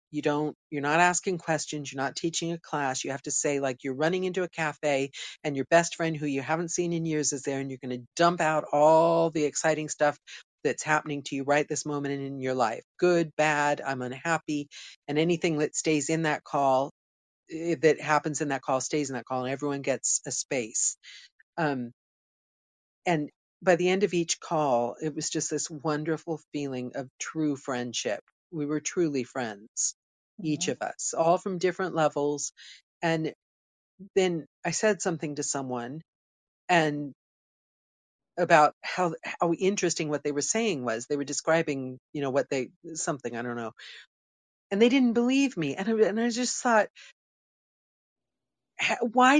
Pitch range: 140-175 Hz